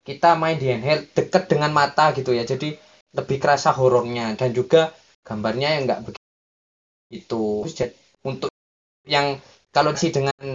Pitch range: 130-170 Hz